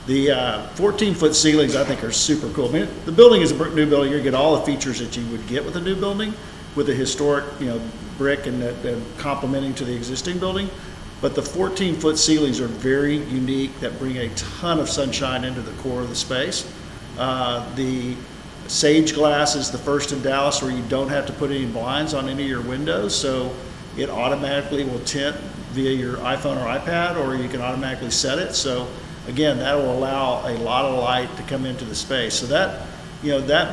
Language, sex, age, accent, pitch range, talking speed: English, male, 50-69, American, 130-150 Hz, 210 wpm